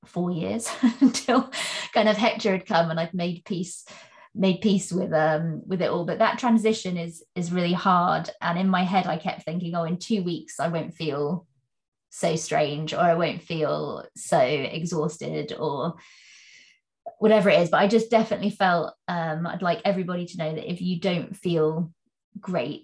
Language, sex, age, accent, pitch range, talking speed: English, female, 20-39, British, 165-205 Hz, 180 wpm